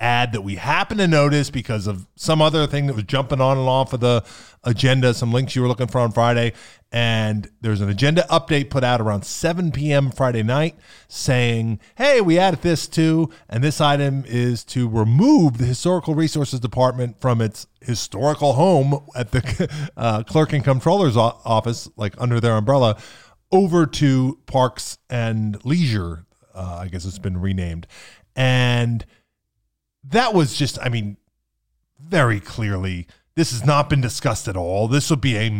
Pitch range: 110-145 Hz